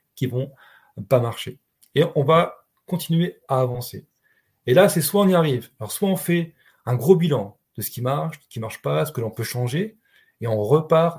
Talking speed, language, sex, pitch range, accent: 225 wpm, French, male, 125-165 Hz, French